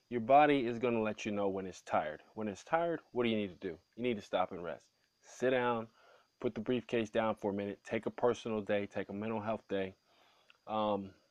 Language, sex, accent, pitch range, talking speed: English, male, American, 100-120 Hz, 240 wpm